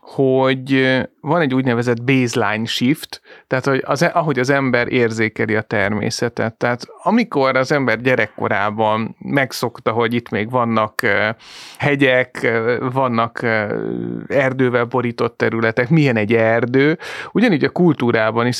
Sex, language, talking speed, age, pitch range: male, Hungarian, 120 wpm, 30-49, 115-140 Hz